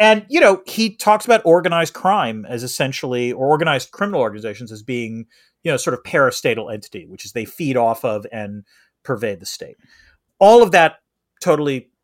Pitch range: 120-185 Hz